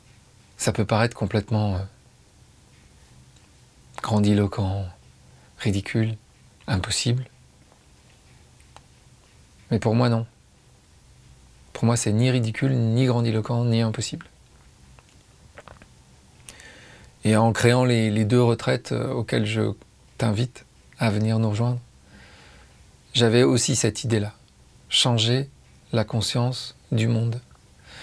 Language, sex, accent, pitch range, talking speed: French, male, French, 105-120 Hz, 90 wpm